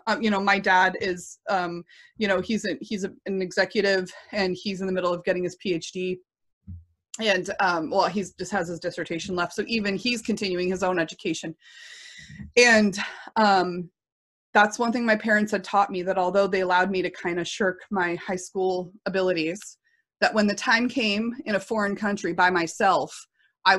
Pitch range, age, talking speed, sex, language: 175-205 Hz, 30-49, 185 wpm, female, English